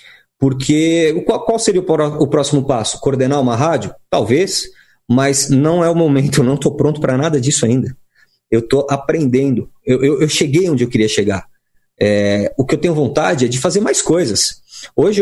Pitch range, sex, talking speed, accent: 125-160 Hz, male, 180 wpm, Brazilian